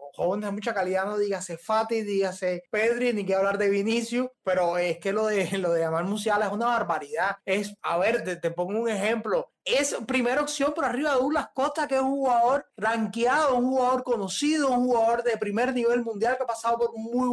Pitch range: 200-255 Hz